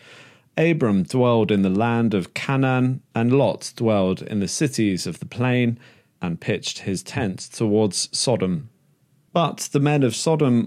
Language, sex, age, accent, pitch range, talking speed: English, male, 40-59, British, 105-130 Hz, 150 wpm